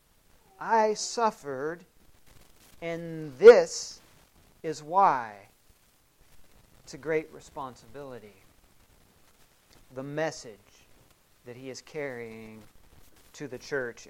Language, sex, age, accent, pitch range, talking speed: English, male, 40-59, American, 145-190 Hz, 80 wpm